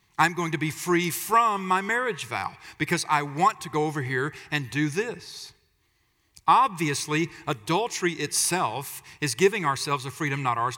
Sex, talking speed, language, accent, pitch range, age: male, 160 wpm, English, American, 135-180 Hz, 50-69